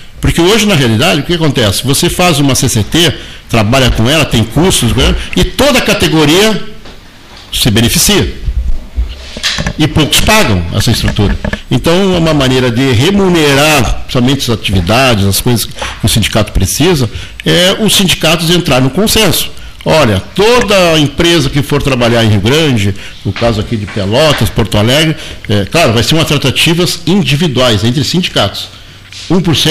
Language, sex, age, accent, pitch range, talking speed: Portuguese, male, 50-69, Brazilian, 105-140 Hz, 150 wpm